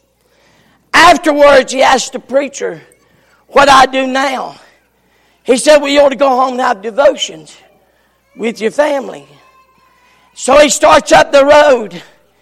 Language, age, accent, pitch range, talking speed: English, 50-69, American, 245-305 Hz, 140 wpm